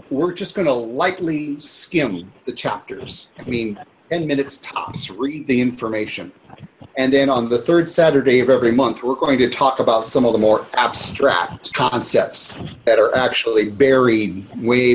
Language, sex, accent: English, male, American